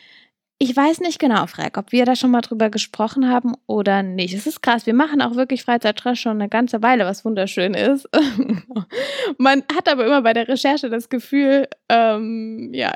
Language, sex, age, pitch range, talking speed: German, female, 10-29, 215-275 Hz, 190 wpm